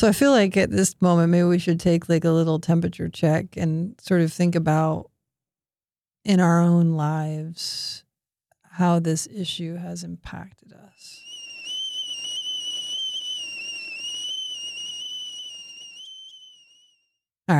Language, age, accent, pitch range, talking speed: English, 40-59, American, 165-200 Hz, 110 wpm